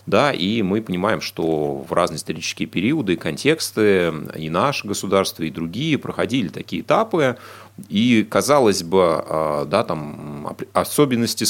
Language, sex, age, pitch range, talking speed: Russian, male, 30-49, 80-115 Hz, 130 wpm